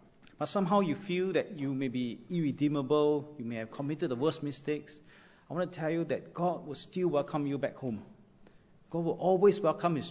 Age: 40-59